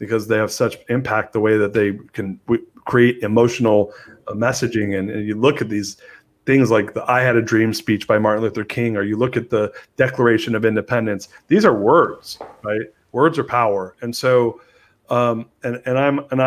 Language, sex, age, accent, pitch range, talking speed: English, male, 40-59, American, 105-130 Hz, 200 wpm